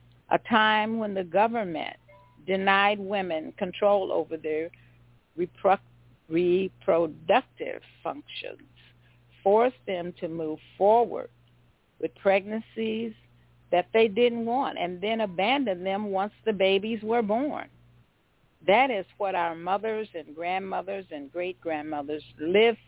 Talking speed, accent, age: 110 wpm, American, 50-69